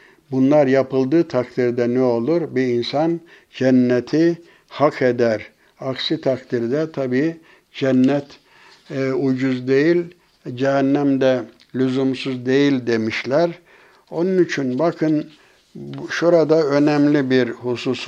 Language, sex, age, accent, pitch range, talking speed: Turkish, male, 60-79, native, 125-145 Hz, 95 wpm